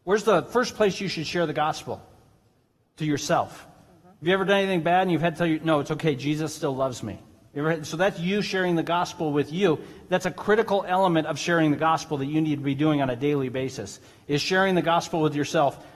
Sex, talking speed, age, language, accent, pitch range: male, 235 wpm, 40-59, English, American, 155-200 Hz